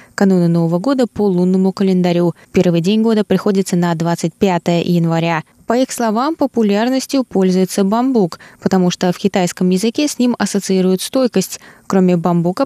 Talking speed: 140 wpm